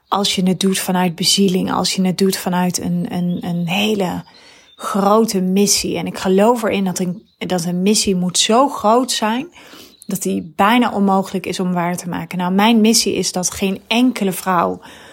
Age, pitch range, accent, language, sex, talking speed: 30-49, 185-220 Hz, Dutch, Dutch, female, 180 wpm